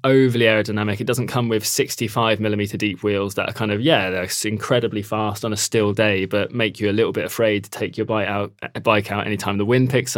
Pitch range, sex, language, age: 100-120 Hz, male, English, 20-39